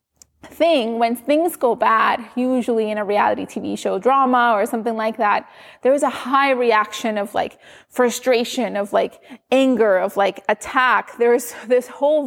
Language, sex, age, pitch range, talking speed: English, female, 20-39, 230-280 Hz, 160 wpm